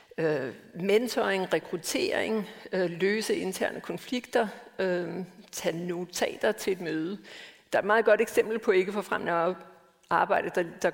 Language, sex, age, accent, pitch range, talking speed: Danish, female, 60-79, native, 185-225 Hz, 120 wpm